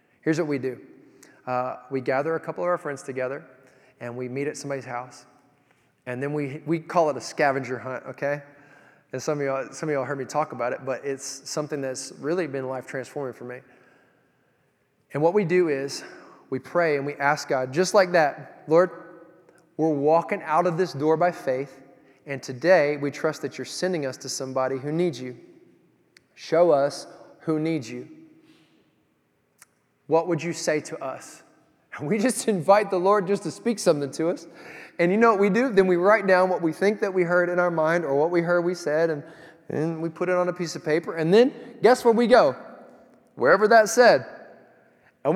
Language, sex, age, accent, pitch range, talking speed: English, male, 20-39, American, 135-175 Hz, 205 wpm